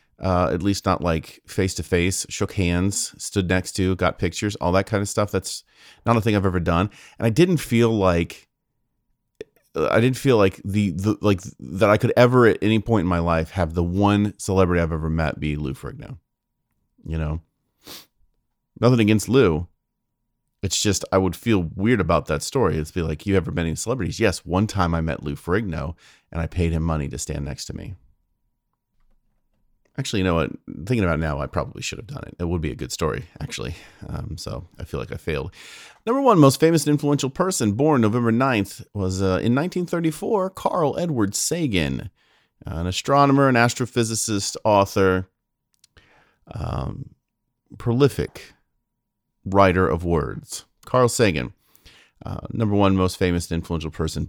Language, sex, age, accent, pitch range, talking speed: English, male, 30-49, American, 85-125 Hz, 180 wpm